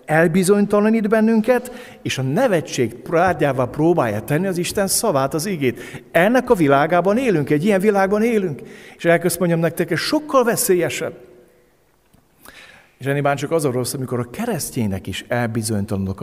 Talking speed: 140 wpm